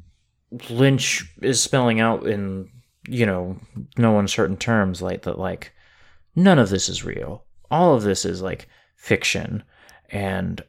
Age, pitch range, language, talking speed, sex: 20-39, 95-115 Hz, English, 140 wpm, male